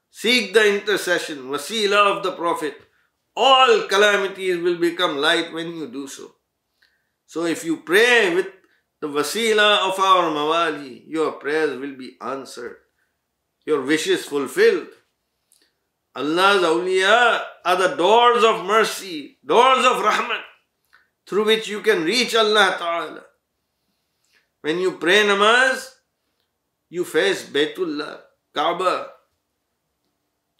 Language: English